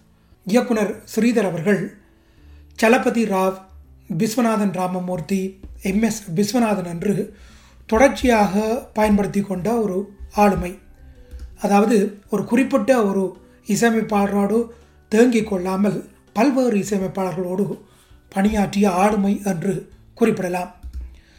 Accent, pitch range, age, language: native, 185-225 Hz, 30-49, Tamil